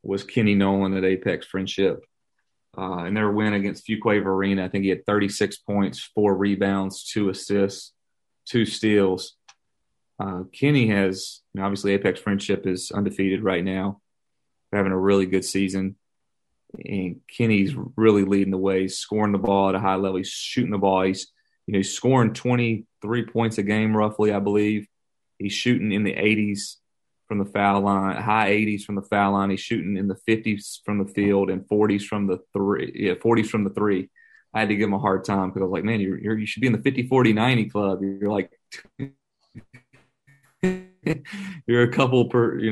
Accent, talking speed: American, 190 wpm